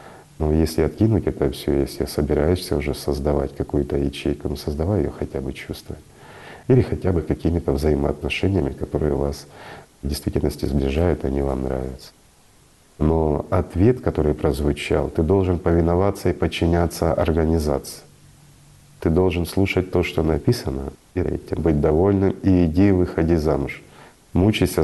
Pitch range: 75-95 Hz